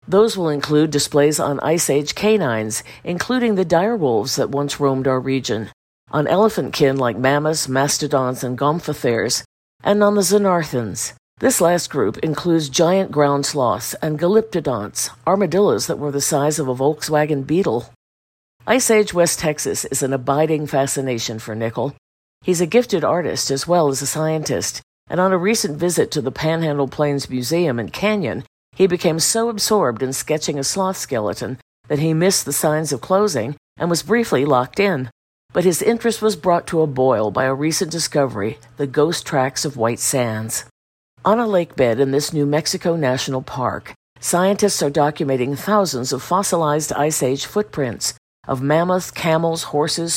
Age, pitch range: 50-69, 135-180 Hz